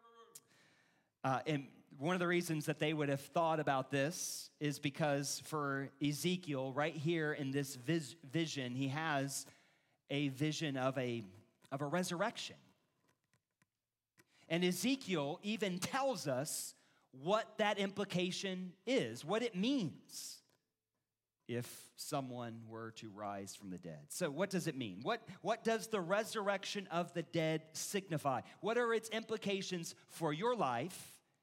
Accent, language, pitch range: American, English, 140-205 Hz